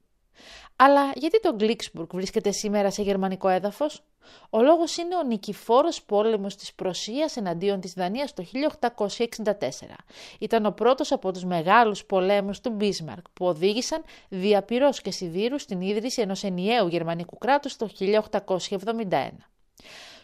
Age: 30-49